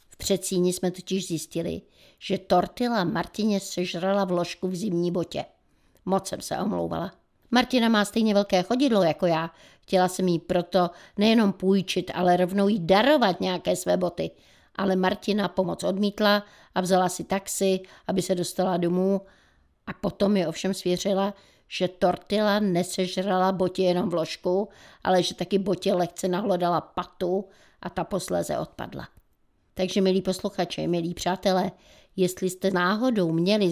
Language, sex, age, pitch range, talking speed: Czech, female, 50-69, 180-200 Hz, 140 wpm